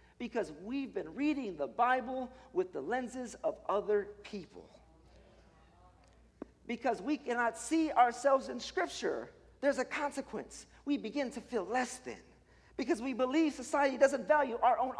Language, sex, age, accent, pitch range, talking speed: English, male, 50-69, American, 210-280 Hz, 145 wpm